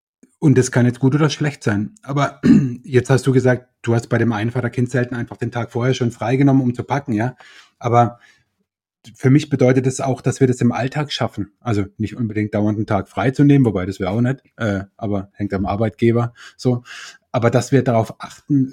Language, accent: German, German